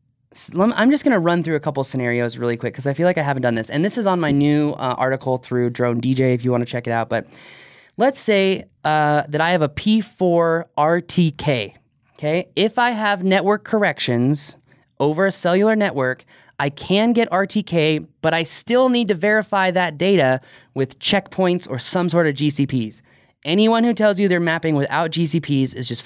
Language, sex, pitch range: English, male, 130-180 Hz